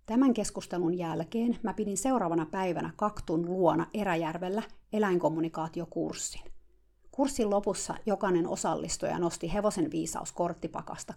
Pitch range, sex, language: 170-230 Hz, female, Finnish